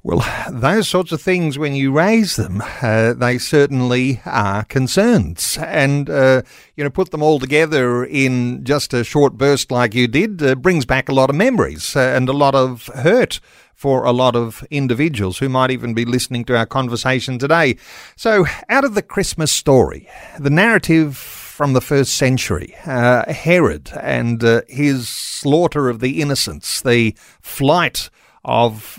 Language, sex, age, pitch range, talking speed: English, male, 50-69, 125-150 Hz, 170 wpm